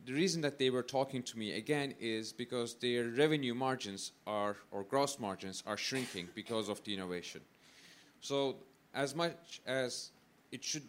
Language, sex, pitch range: English, male, 120-140 Hz